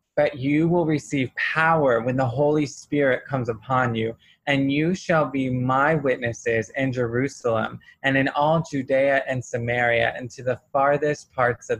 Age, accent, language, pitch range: 20-39, American, English, 120-150 Hz